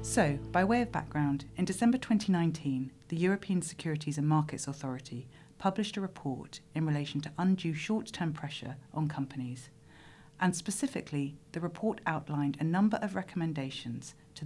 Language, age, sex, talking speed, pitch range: English, 40-59, female, 145 wpm, 140-170 Hz